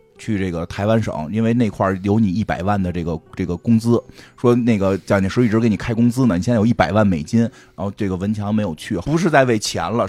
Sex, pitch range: male, 100-135 Hz